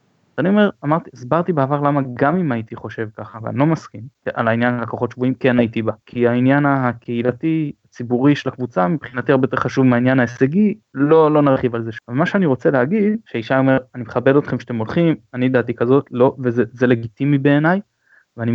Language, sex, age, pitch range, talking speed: Hebrew, male, 20-39, 120-165 Hz, 190 wpm